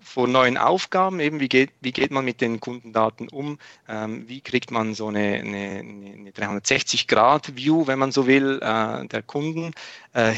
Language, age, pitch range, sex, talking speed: German, 40-59, 110-130 Hz, male, 185 wpm